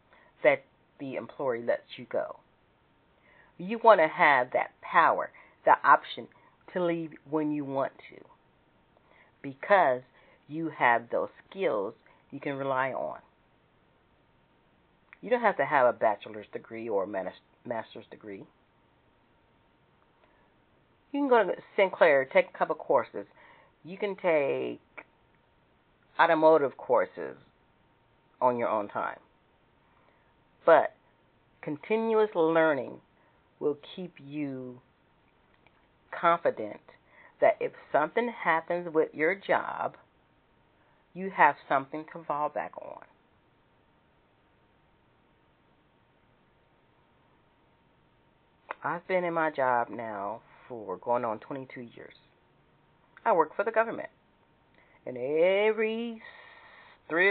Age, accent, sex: 40-59, American, female